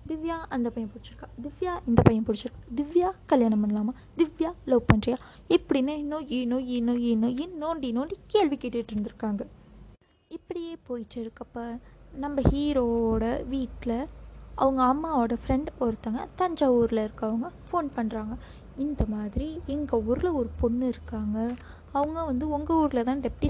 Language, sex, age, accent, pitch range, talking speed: Tamil, female, 20-39, native, 230-285 Hz, 135 wpm